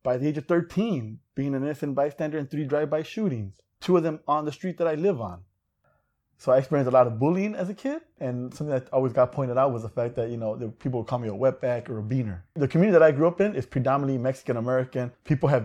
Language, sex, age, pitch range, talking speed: English, male, 20-39, 125-150 Hz, 260 wpm